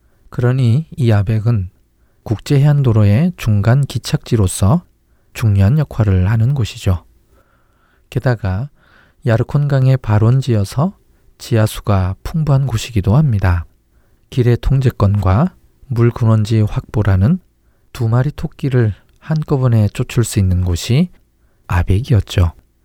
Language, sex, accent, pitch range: Korean, male, native, 100-130 Hz